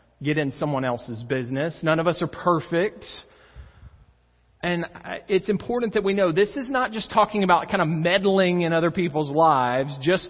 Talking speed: 175 wpm